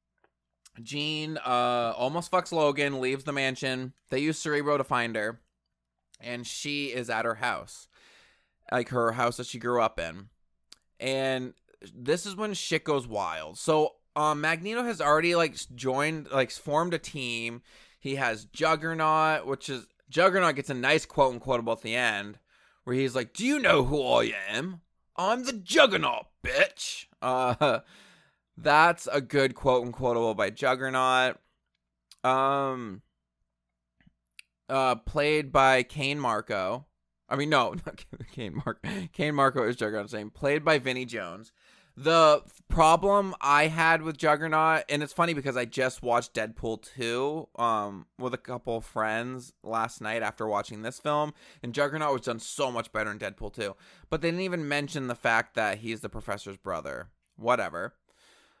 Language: English